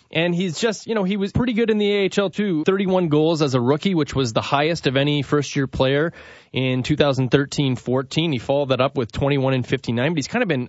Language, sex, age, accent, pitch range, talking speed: English, male, 20-39, American, 125-160 Hz, 225 wpm